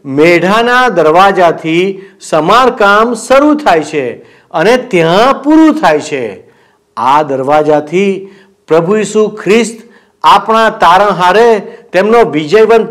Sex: male